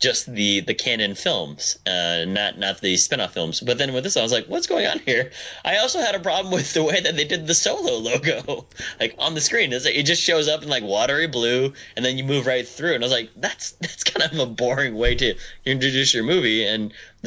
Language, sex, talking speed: English, male, 245 wpm